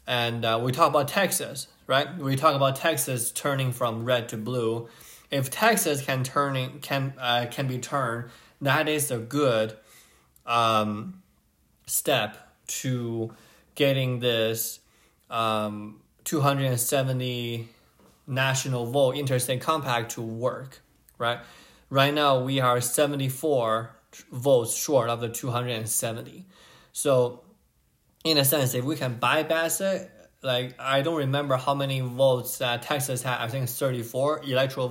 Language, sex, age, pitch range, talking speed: English, male, 20-39, 110-140 Hz, 130 wpm